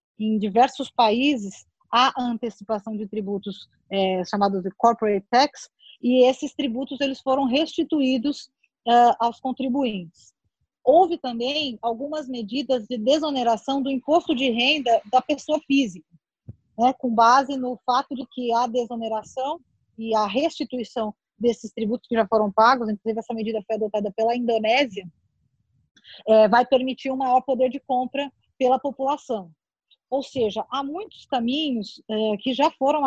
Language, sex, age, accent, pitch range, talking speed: Portuguese, female, 20-39, Brazilian, 215-260 Hz, 140 wpm